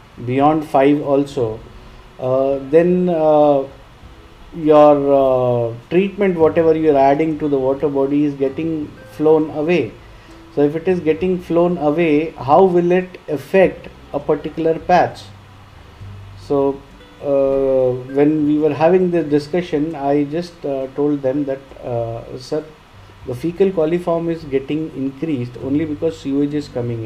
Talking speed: 135 wpm